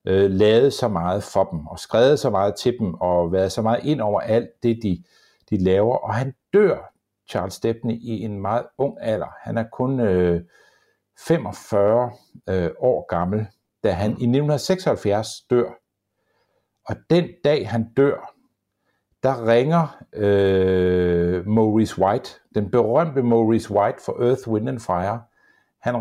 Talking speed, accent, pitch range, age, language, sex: 150 wpm, native, 105-140 Hz, 60-79, Danish, male